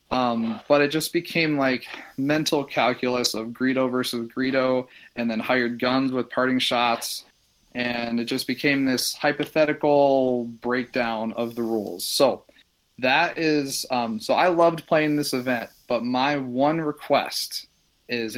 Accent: American